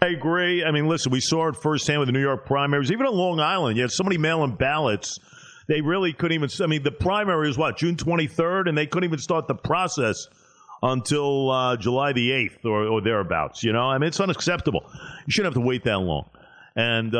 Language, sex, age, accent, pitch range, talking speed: English, male, 50-69, American, 140-195 Hz, 225 wpm